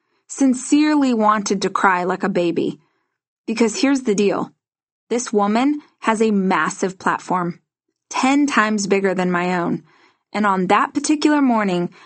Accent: American